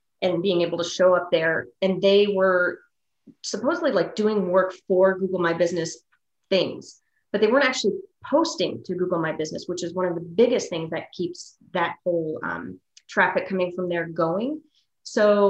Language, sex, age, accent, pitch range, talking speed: English, female, 30-49, American, 175-200 Hz, 180 wpm